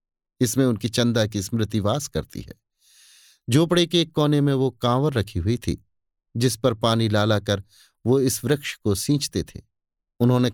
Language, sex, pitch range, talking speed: Hindi, male, 100-135 Hz, 170 wpm